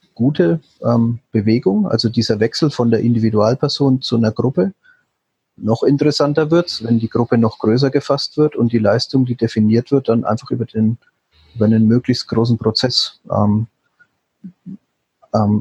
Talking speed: 140 wpm